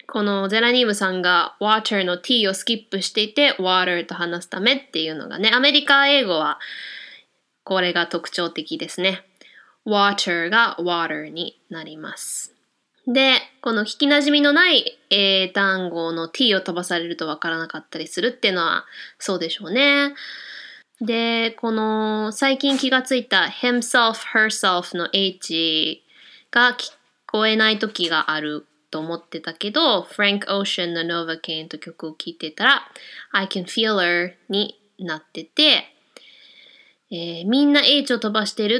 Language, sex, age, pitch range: Japanese, female, 20-39, 180-250 Hz